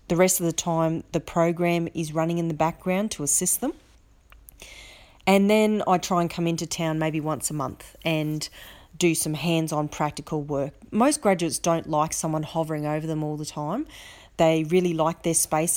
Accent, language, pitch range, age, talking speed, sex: Australian, English, 155-185 Hz, 30-49, 185 wpm, female